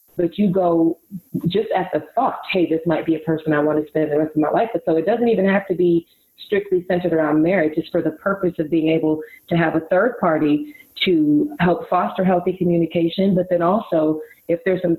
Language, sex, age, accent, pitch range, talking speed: English, female, 30-49, American, 155-185 Hz, 230 wpm